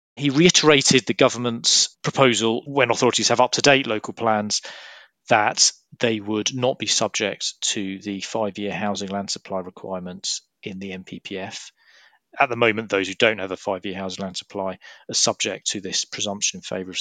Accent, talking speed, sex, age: British, 180 wpm, male, 40-59